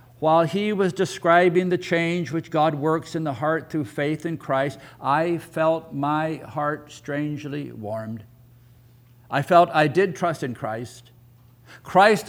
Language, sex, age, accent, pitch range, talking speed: English, male, 60-79, American, 120-170 Hz, 145 wpm